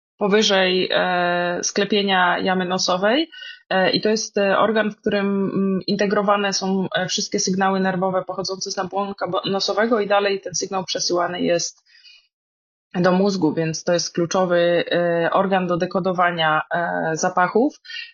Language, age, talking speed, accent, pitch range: Polish, 20-39, 115 wpm, native, 175-205 Hz